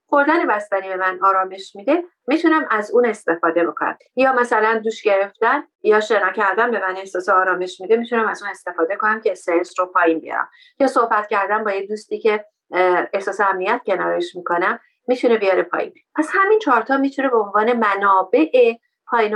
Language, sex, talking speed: Persian, female, 175 wpm